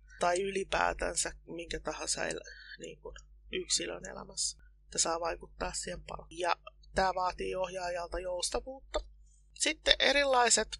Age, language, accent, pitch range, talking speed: 20-39, Finnish, native, 165-215 Hz, 105 wpm